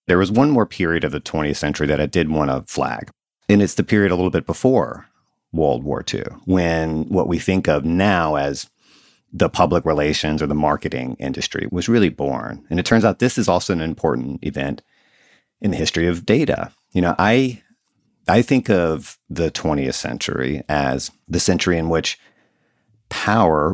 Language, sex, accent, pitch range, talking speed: English, male, American, 75-100 Hz, 185 wpm